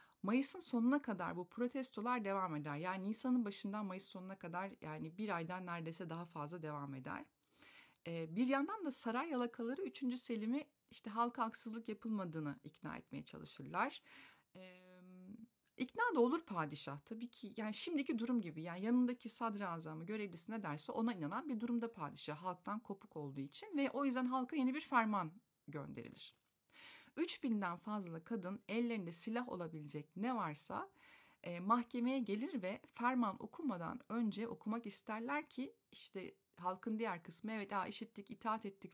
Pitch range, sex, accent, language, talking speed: 180-240 Hz, female, native, Turkish, 145 wpm